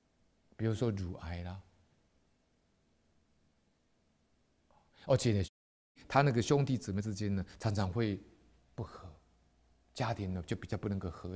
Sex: male